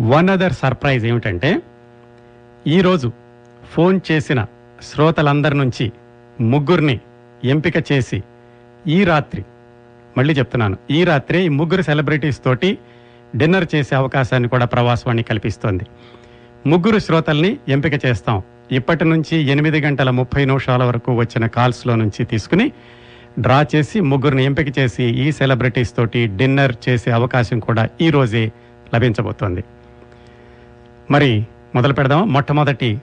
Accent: native